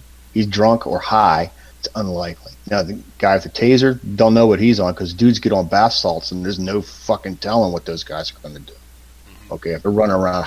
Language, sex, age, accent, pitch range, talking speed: English, male, 30-49, American, 80-110 Hz, 235 wpm